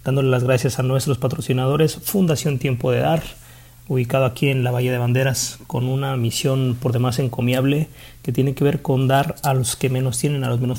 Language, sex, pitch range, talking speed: Spanish, male, 120-140 Hz, 205 wpm